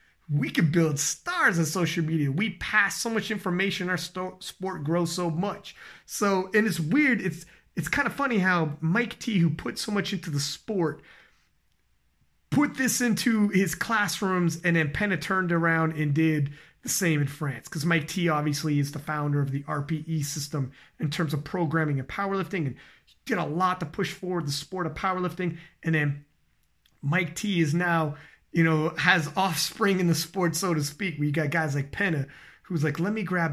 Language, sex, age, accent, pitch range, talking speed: English, male, 30-49, American, 150-195 Hz, 195 wpm